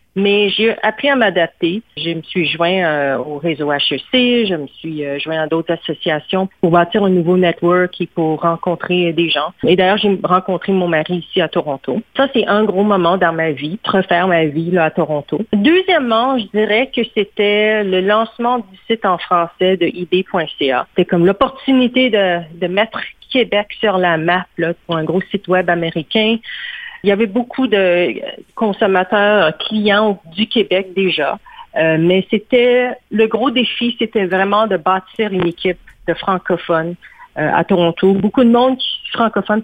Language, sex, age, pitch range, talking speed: French, female, 40-59, 175-230 Hz, 175 wpm